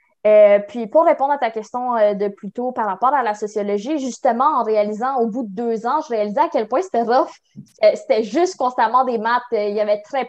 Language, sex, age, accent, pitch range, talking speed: French, female, 20-39, Canadian, 215-260 Hz, 245 wpm